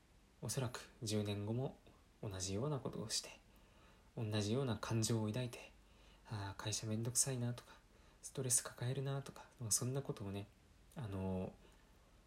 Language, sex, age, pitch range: Japanese, male, 20-39, 100-125 Hz